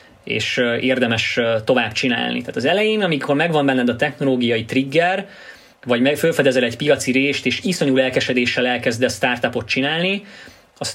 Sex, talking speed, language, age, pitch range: male, 145 wpm, Hungarian, 20-39, 120-150 Hz